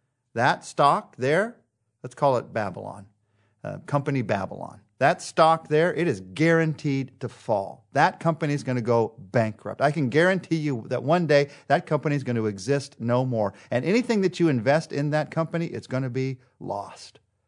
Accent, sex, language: American, male, English